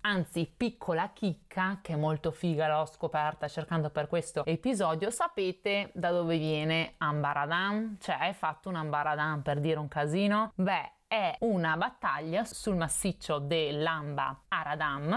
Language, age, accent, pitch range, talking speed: Italian, 30-49, native, 155-195 Hz, 135 wpm